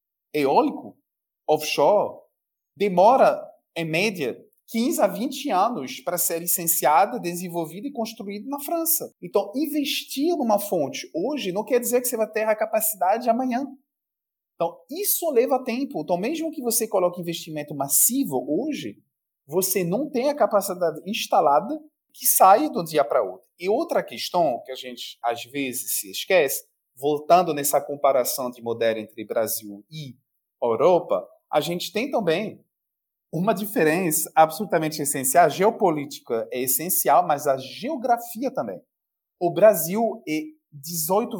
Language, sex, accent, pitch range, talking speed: Portuguese, male, Brazilian, 155-260 Hz, 140 wpm